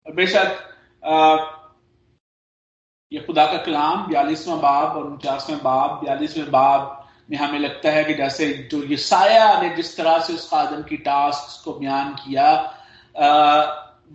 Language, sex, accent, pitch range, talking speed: Hindi, male, native, 145-220 Hz, 130 wpm